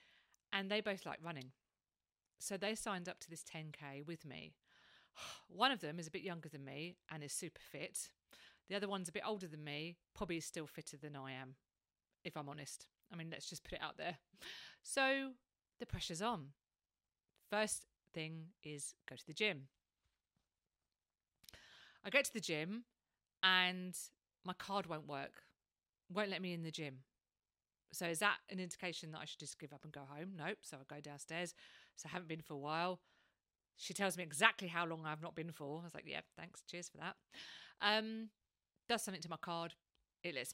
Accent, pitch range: British, 145-200 Hz